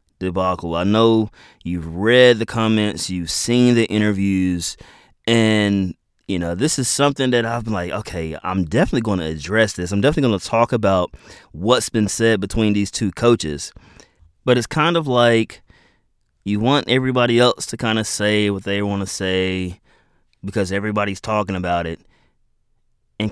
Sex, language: male, English